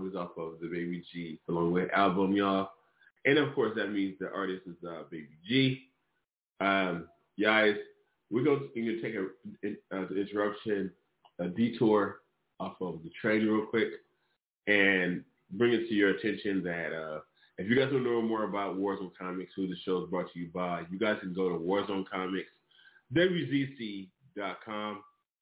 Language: English